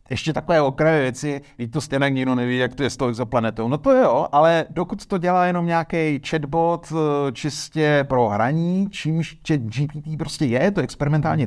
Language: Czech